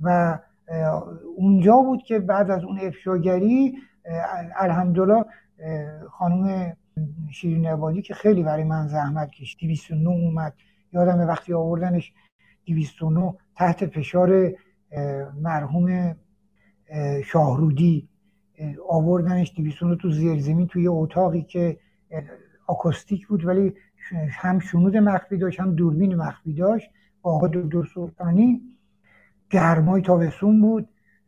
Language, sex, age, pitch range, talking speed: Persian, male, 60-79, 160-190 Hz, 100 wpm